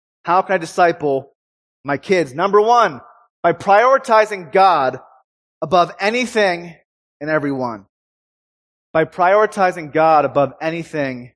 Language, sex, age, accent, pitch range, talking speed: English, male, 30-49, American, 150-200 Hz, 105 wpm